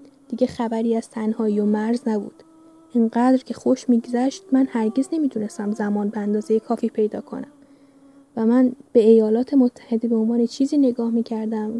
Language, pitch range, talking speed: Persian, 225-260 Hz, 165 wpm